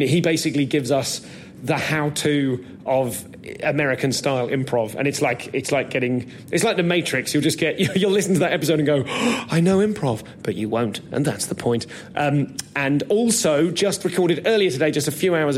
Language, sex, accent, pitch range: English, male, British, 130-155 Hz